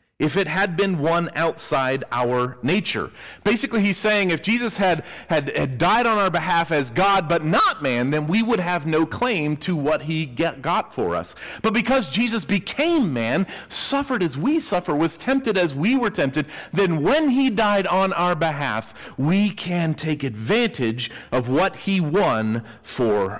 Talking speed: 175 wpm